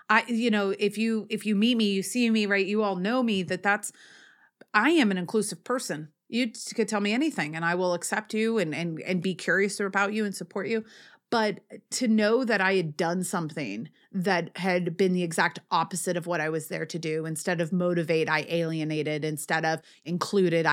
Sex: female